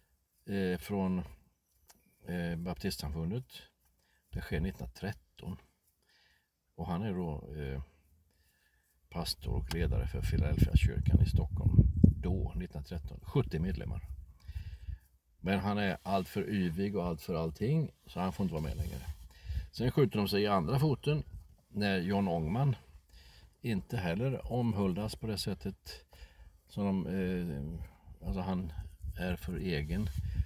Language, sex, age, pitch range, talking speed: Swedish, male, 50-69, 80-100 Hz, 120 wpm